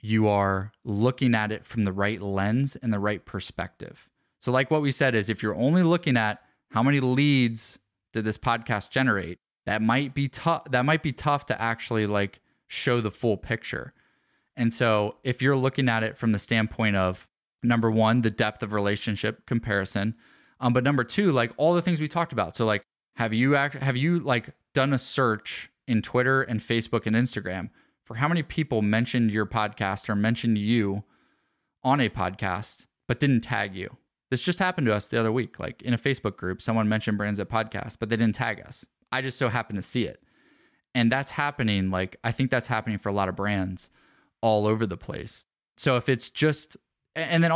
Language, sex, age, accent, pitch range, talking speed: English, male, 20-39, American, 105-130 Hz, 205 wpm